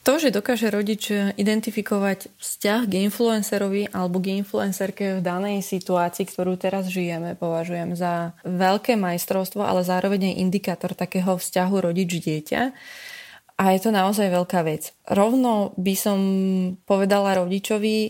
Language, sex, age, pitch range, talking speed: Slovak, female, 20-39, 180-200 Hz, 125 wpm